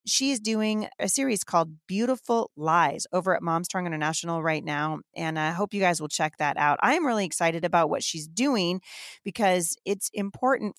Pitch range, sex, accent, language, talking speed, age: 155-205 Hz, female, American, English, 185 wpm, 30-49